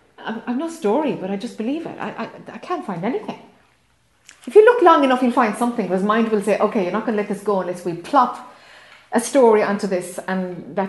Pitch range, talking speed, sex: 200-275 Hz, 240 wpm, female